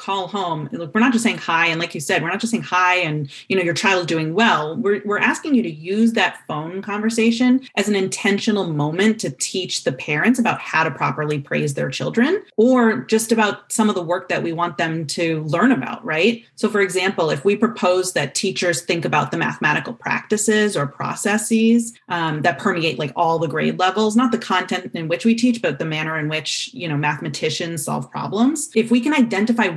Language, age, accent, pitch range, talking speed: English, 30-49, American, 170-230 Hz, 215 wpm